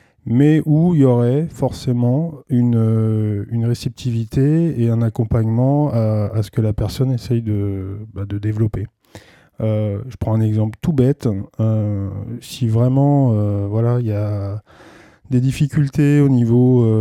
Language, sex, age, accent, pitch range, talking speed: French, male, 20-39, French, 105-125 Hz, 150 wpm